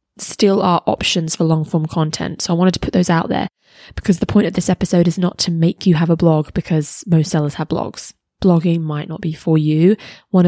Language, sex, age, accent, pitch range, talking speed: English, female, 20-39, British, 170-205 Hz, 235 wpm